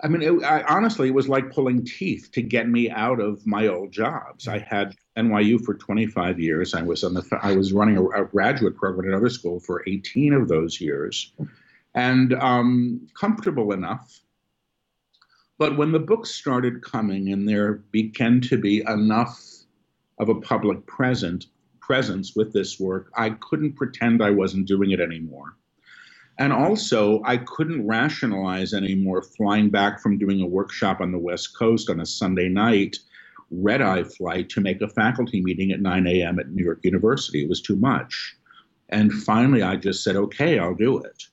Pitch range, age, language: 95-125 Hz, 50-69, English